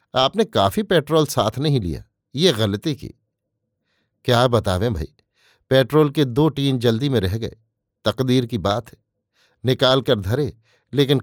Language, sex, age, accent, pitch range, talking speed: Hindi, male, 50-69, native, 110-140 Hz, 150 wpm